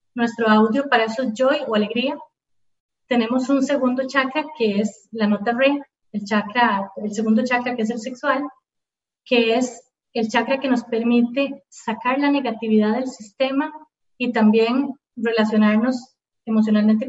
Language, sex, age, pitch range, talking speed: Spanish, female, 30-49, 230-270 Hz, 150 wpm